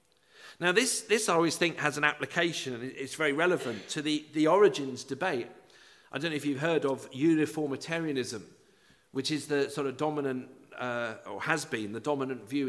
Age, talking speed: 50-69, 185 wpm